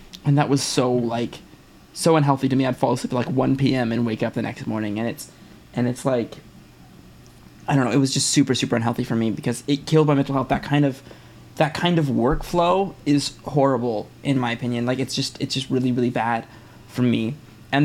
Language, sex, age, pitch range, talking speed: English, male, 20-39, 125-145 Hz, 225 wpm